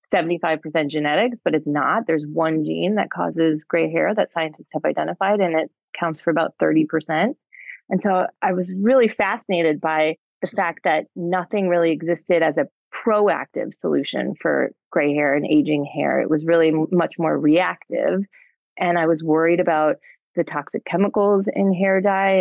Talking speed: 165 wpm